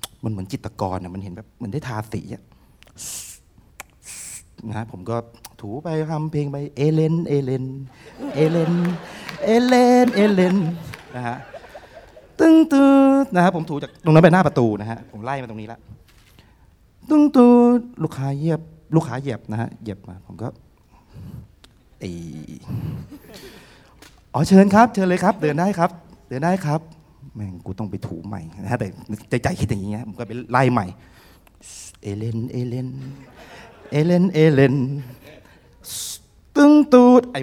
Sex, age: male, 30-49